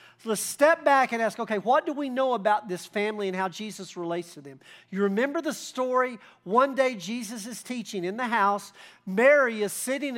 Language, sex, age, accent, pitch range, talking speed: English, male, 50-69, American, 180-260 Hz, 200 wpm